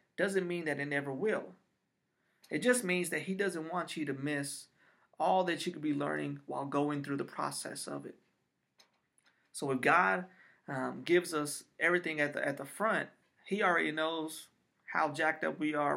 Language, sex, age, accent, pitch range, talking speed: English, male, 30-49, American, 145-175 Hz, 185 wpm